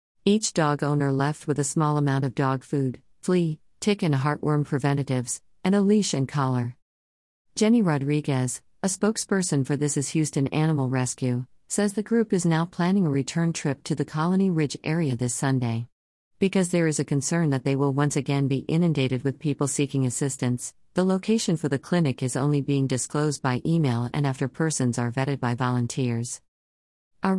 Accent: American